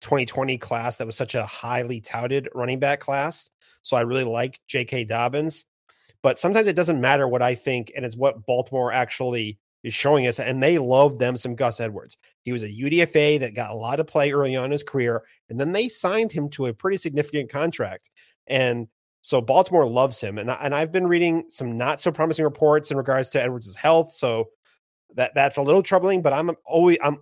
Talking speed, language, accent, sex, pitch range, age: 210 wpm, English, American, male, 120-145 Hz, 30-49